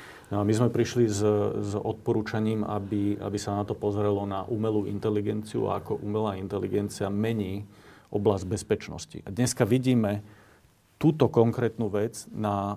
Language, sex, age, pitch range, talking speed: Slovak, male, 40-59, 100-110 Hz, 135 wpm